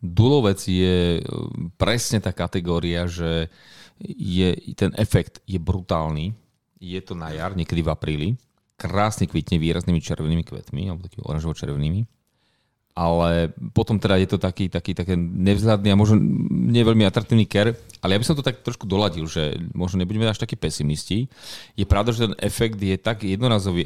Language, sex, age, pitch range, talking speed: Slovak, male, 30-49, 90-110 Hz, 160 wpm